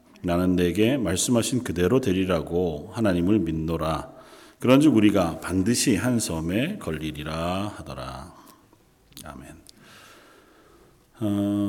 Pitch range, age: 85-105 Hz, 40-59